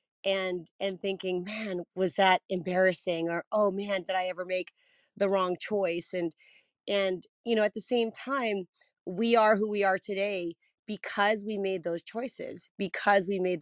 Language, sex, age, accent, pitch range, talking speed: English, female, 30-49, American, 185-225 Hz, 170 wpm